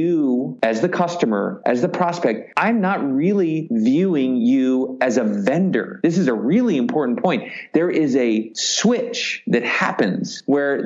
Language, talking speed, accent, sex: English, 155 wpm, American, male